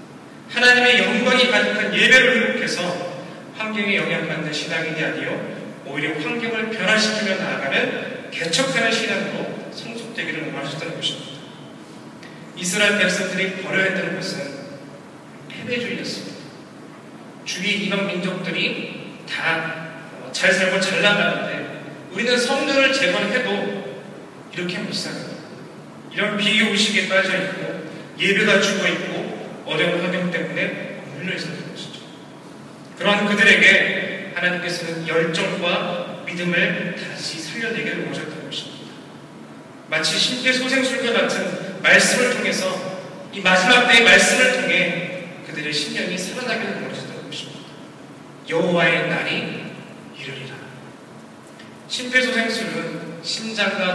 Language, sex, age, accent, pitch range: Korean, male, 40-59, native, 175-225 Hz